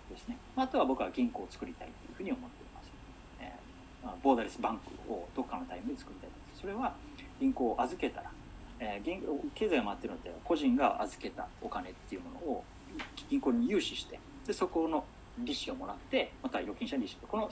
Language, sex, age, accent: Japanese, male, 40-59, native